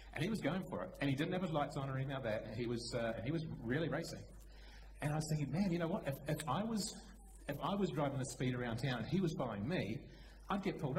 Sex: male